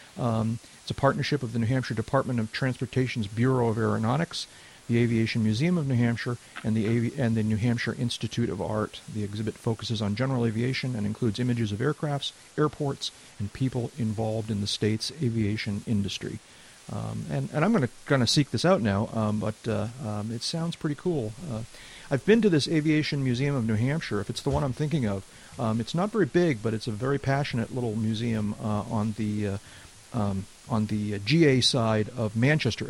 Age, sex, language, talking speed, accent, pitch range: 40-59, male, English, 200 wpm, American, 110-135 Hz